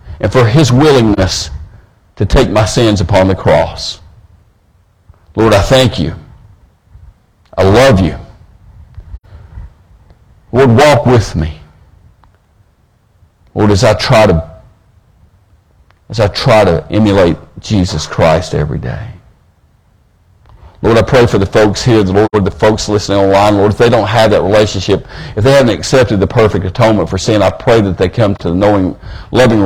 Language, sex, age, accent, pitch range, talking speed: English, male, 50-69, American, 90-110 Hz, 150 wpm